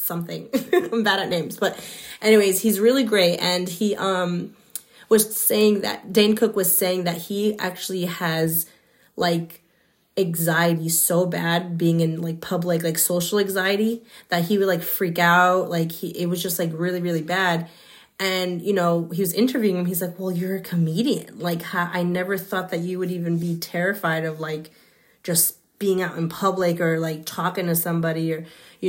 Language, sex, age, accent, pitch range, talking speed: English, female, 20-39, American, 170-195 Hz, 180 wpm